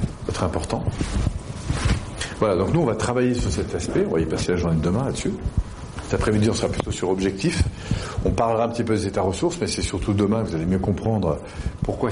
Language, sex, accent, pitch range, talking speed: French, male, French, 90-115 Hz, 220 wpm